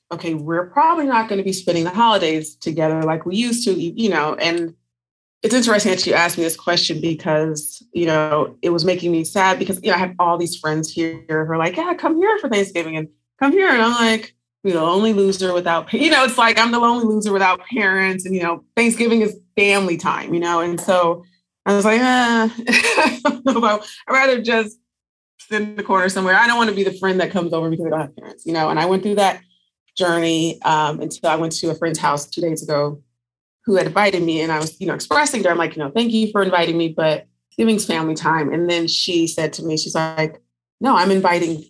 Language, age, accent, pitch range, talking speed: English, 30-49, American, 165-215 Hz, 240 wpm